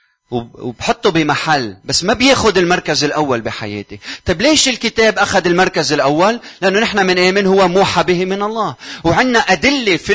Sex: male